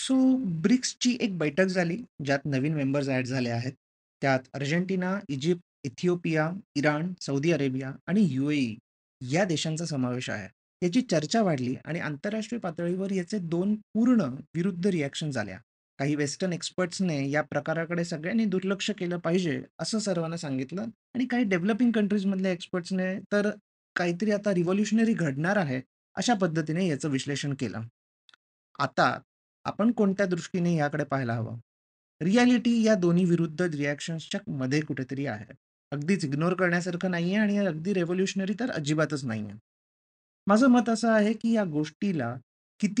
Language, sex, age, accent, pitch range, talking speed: Marathi, male, 30-49, native, 140-200 Hz, 115 wpm